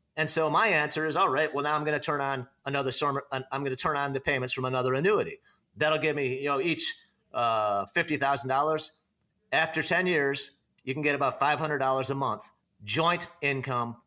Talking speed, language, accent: 190 wpm, English, American